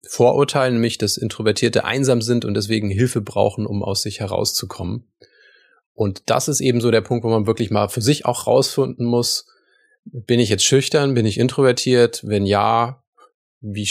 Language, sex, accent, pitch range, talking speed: German, male, German, 105-130 Hz, 175 wpm